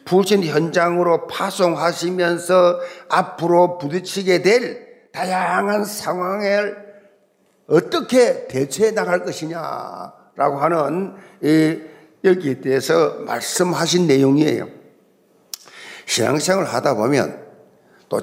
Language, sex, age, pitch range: Korean, male, 50-69, 155-210 Hz